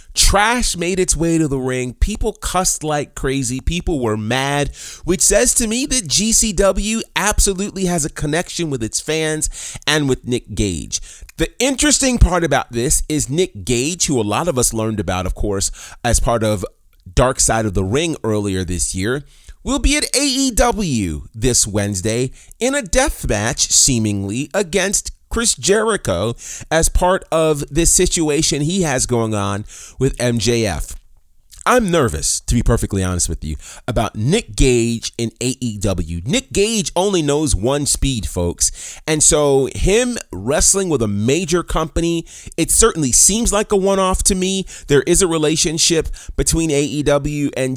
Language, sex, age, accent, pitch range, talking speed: English, male, 30-49, American, 115-175 Hz, 160 wpm